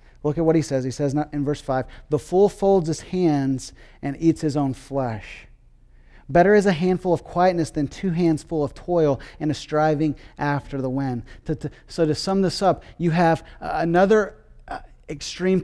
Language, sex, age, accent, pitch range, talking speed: English, male, 30-49, American, 145-175 Hz, 180 wpm